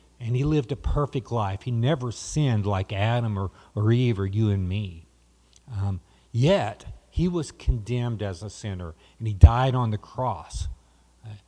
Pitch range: 95-135 Hz